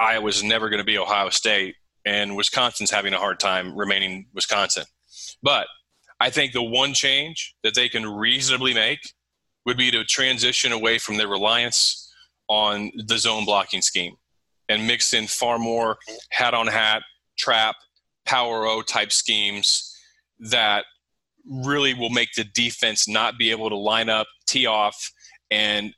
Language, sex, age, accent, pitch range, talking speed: English, male, 30-49, American, 110-125 Hz, 150 wpm